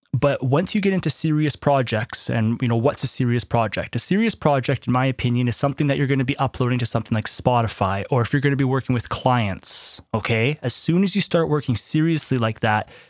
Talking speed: 235 wpm